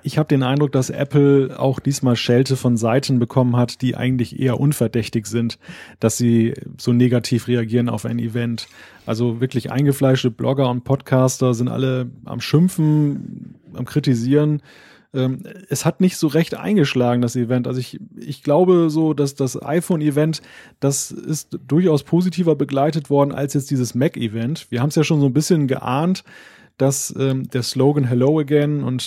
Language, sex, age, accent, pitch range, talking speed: German, male, 30-49, German, 125-155 Hz, 165 wpm